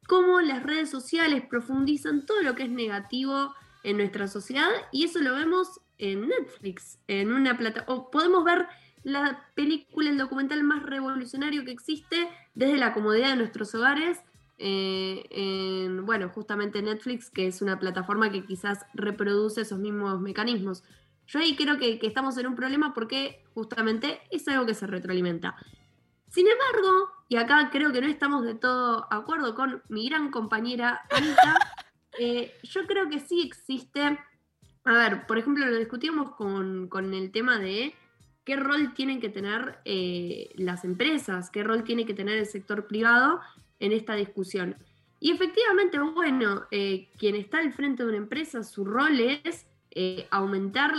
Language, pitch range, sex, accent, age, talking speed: Spanish, 205-290 Hz, female, Argentinian, 10-29, 160 wpm